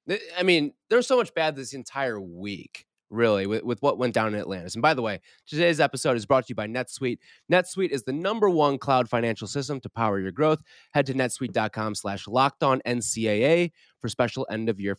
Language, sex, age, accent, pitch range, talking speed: English, male, 20-39, American, 110-155 Hz, 195 wpm